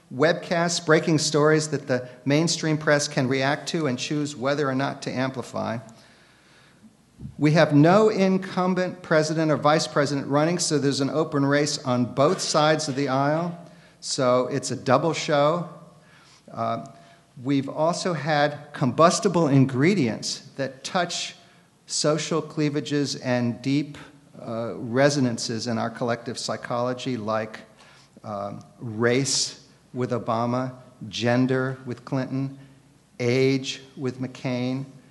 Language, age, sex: English, 50-69, male